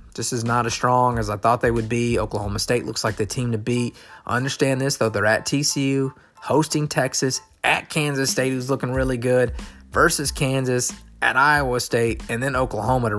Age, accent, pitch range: 30-49, American, 110-140 Hz